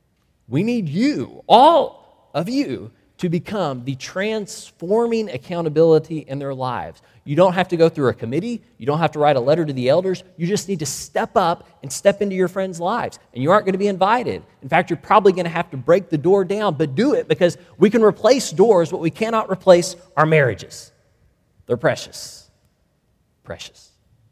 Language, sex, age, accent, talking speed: English, male, 30-49, American, 195 wpm